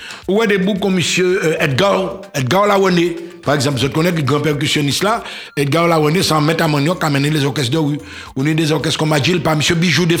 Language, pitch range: French, 150-185 Hz